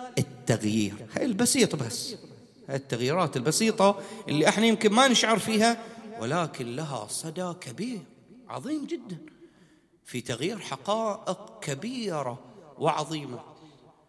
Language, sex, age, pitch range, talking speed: English, male, 40-59, 150-230 Hz, 100 wpm